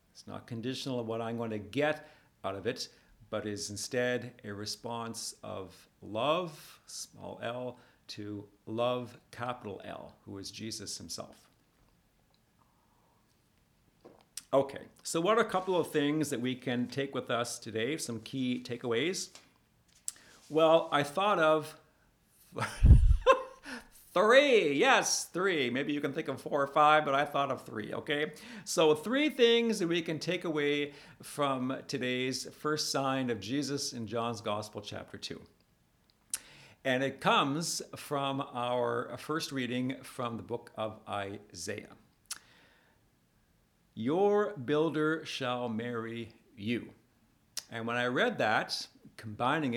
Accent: American